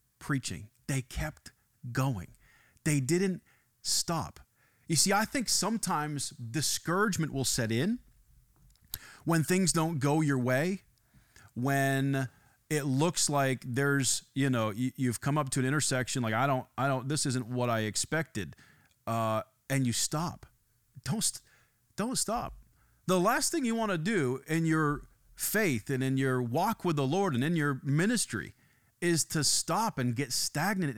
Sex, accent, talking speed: male, American, 155 wpm